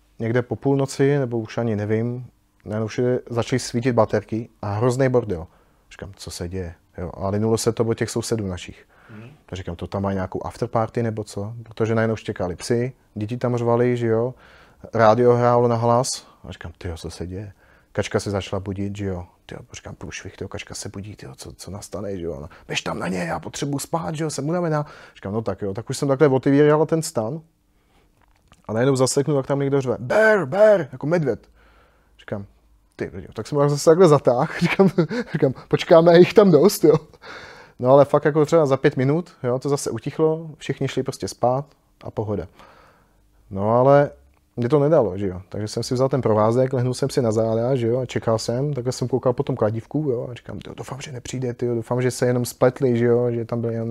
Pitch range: 105-135 Hz